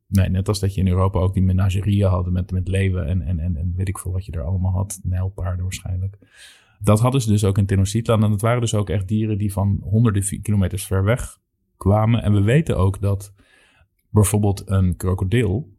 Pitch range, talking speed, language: 95-110 Hz, 215 wpm, Dutch